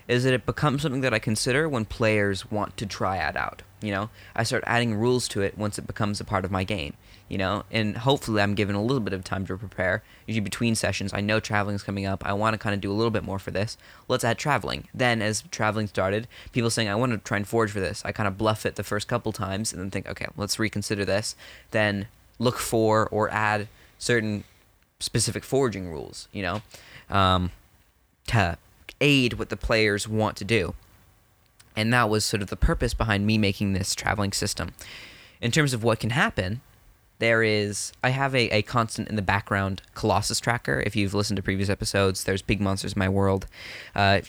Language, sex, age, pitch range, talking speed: English, male, 20-39, 100-115 Hz, 220 wpm